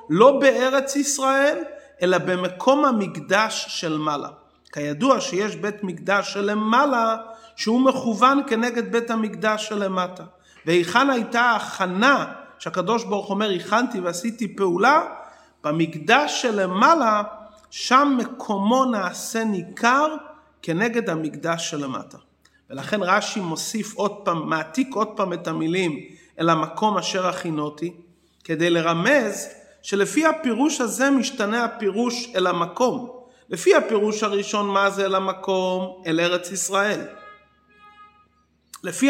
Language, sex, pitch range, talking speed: English, male, 185-245 Hz, 110 wpm